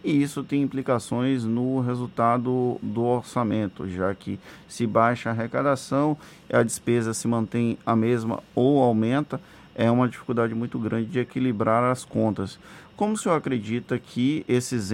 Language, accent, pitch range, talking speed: Portuguese, Brazilian, 115-175 Hz, 150 wpm